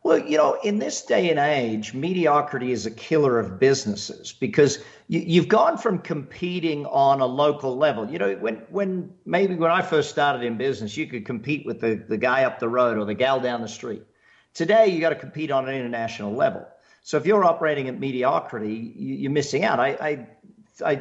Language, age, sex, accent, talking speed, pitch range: English, 50-69, male, American, 205 wpm, 130-175 Hz